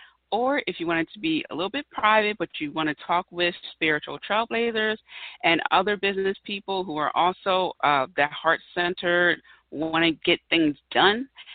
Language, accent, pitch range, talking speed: English, American, 160-220 Hz, 175 wpm